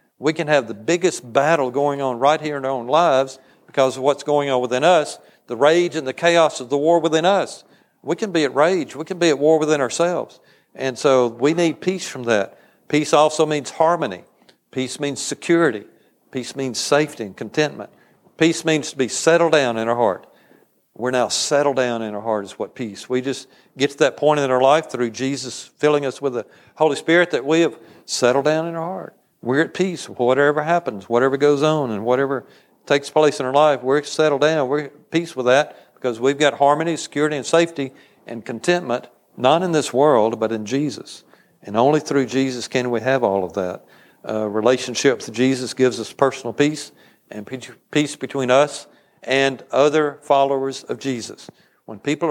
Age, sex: 50-69, male